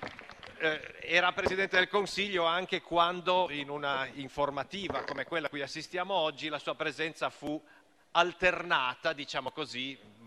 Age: 40-59